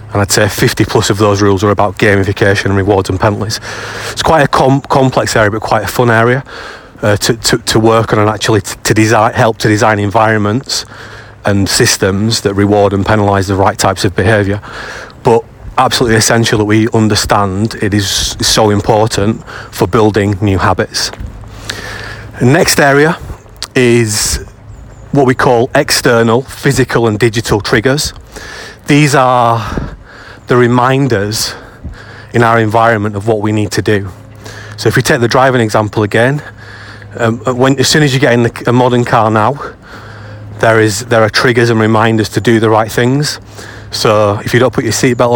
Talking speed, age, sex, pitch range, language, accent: 165 wpm, 30-49, male, 105-120 Hz, English, British